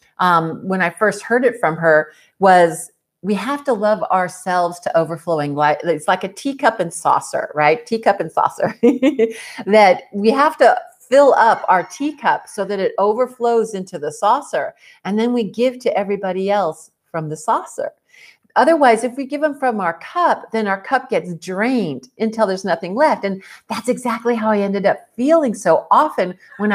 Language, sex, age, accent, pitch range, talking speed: English, female, 50-69, American, 175-235 Hz, 175 wpm